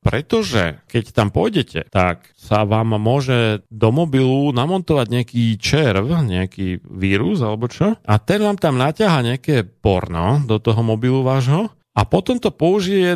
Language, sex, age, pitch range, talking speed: Slovak, male, 40-59, 100-130 Hz, 145 wpm